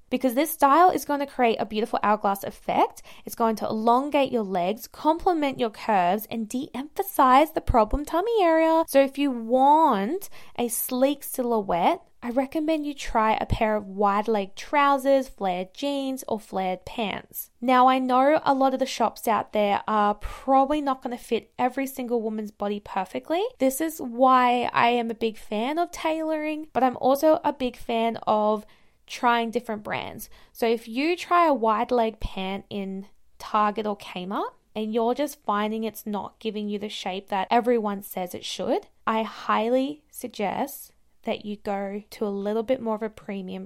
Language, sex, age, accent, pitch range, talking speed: English, female, 10-29, Australian, 210-275 Hz, 180 wpm